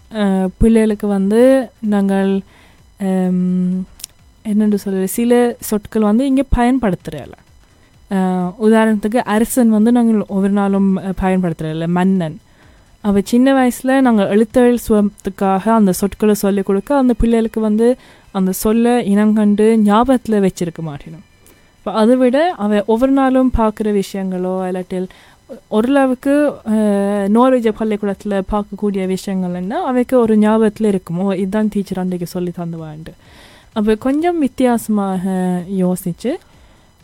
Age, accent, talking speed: 20-39, native, 100 wpm